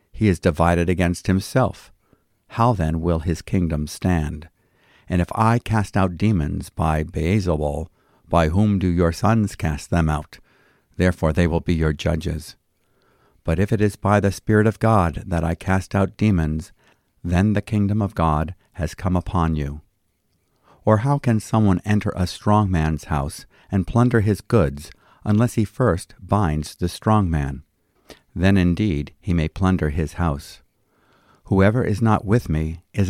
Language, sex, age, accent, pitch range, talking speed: English, male, 50-69, American, 80-105 Hz, 160 wpm